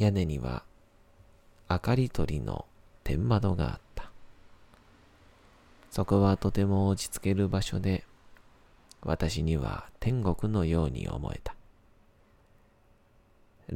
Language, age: Japanese, 40-59